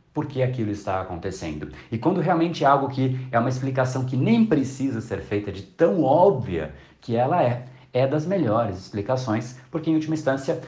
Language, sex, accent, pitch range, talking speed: Portuguese, male, Brazilian, 110-155 Hz, 180 wpm